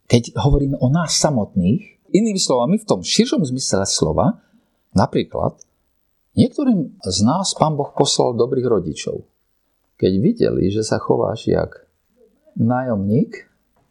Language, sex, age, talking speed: Slovak, male, 50-69, 120 wpm